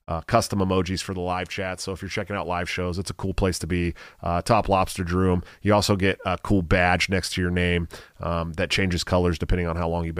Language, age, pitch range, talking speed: English, 30-49, 90-110 Hz, 255 wpm